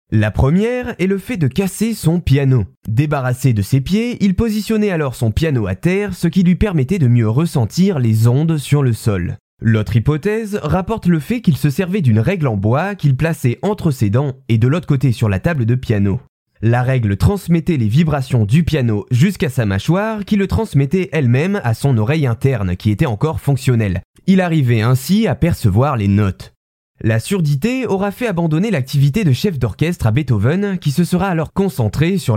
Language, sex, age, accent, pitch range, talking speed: French, male, 20-39, French, 120-175 Hz, 195 wpm